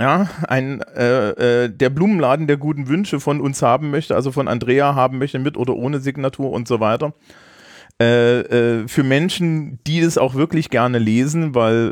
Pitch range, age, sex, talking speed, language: 110-140 Hz, 40-59, male, 180 wpm, German